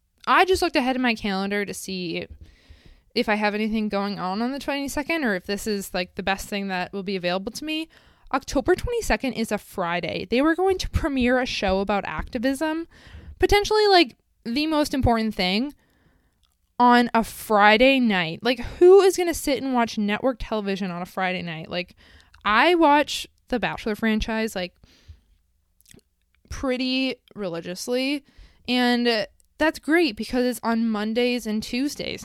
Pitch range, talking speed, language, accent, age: 195-275 Hz, 165 wpm, English, American, 20-39